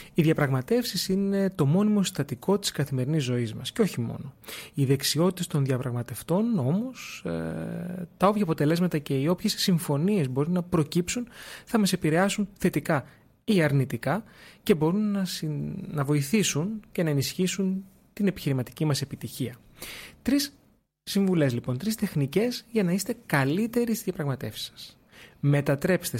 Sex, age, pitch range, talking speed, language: male, 30-49, 135-190 Hz, 135 wpm, Greek